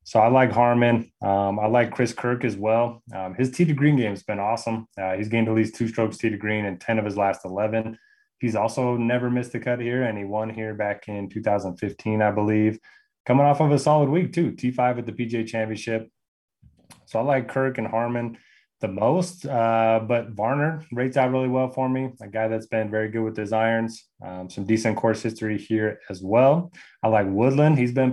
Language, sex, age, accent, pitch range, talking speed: English, male, 20-39, American, 105-125 Hz, 220 wpm